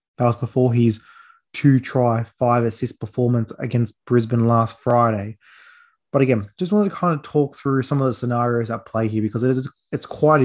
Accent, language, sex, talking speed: Australian, English, male, 195 wpm